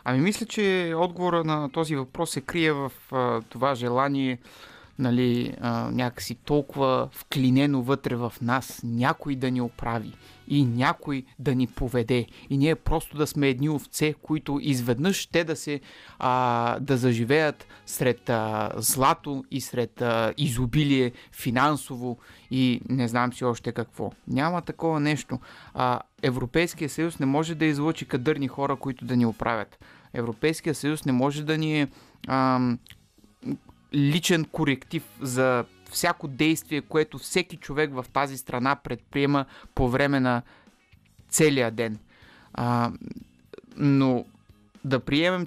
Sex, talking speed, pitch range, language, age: male, 135 wpm, 125-150 Hz, Bulgarian, 30-49